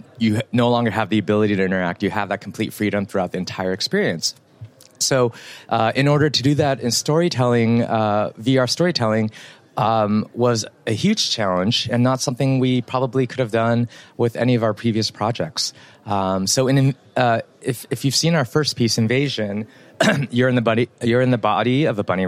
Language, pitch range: English, 105-130 Hz